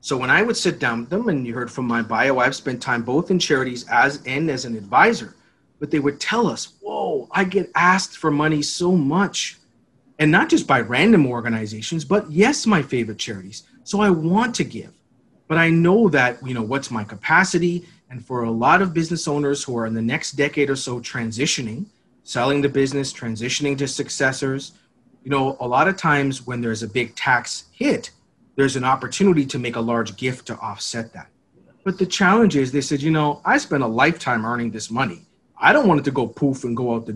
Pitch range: 120-175 Hz